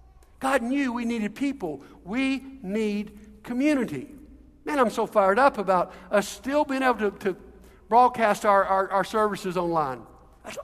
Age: 60-79